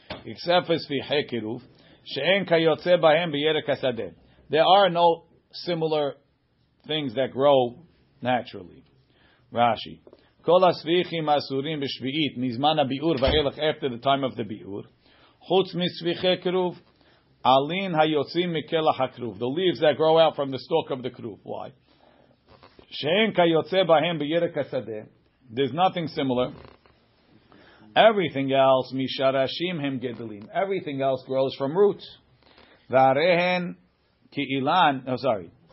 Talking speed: 115 wpm